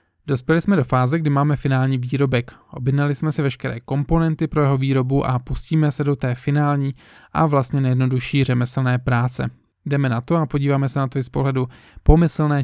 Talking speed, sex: 185 wpm, male